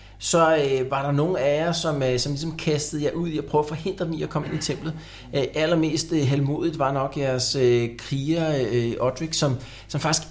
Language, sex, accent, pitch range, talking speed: Danish, male, native, 125-160 Hz, 235 wpm